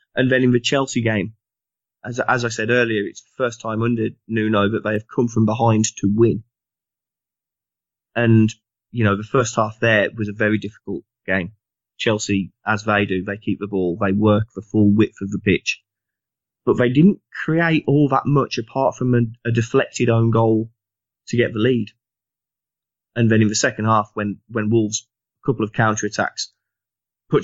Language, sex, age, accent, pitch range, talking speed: English, male, 20-39, British, 105-115 Hz, 190 wpm